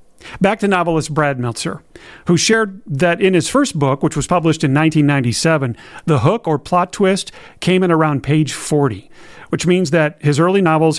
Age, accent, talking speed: 40-59, American, 180 wpm